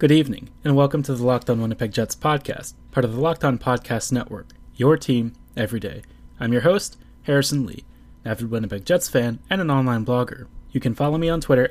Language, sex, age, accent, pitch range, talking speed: English, male, 20-39, American, 115-145 Hz, 205 wpm